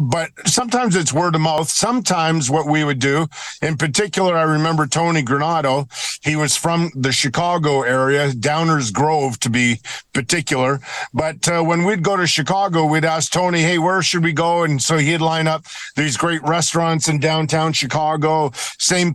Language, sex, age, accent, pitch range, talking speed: English, male, 50-69, American, 145-170 Hz, 170 wpm